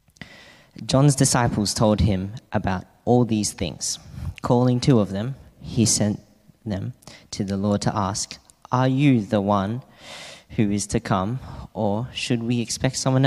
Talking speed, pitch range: 150 wpm, 100-120 Hz